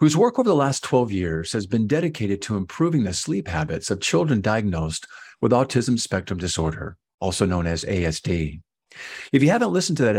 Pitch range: 90-130 Hz